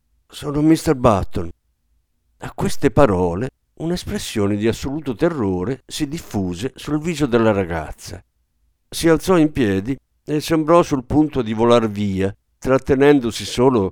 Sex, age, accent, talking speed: male, 50-69, native, 125 wpm